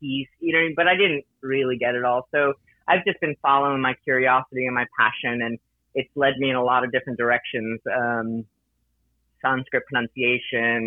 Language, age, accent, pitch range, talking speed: English, 30-49, American, 120-145 Hz, 175 wpm